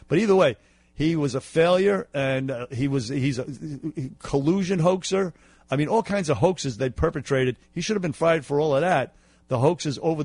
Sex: male